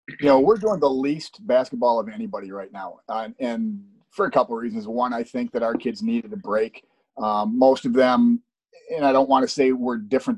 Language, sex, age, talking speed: English, male, 30-49, 225 wpm